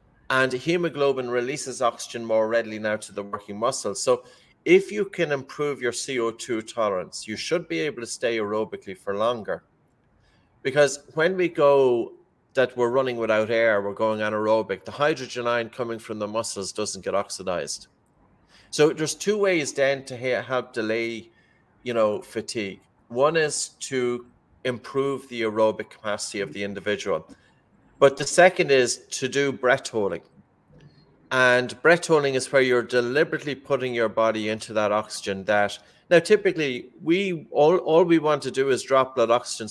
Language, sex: English, male